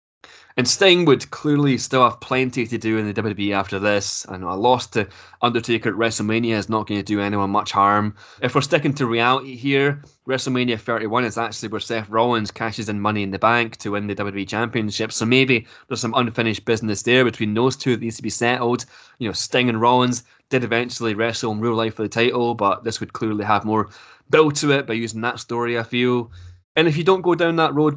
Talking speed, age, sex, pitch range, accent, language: 225 wpm, 20-39, male, 105-125 Hz, British, English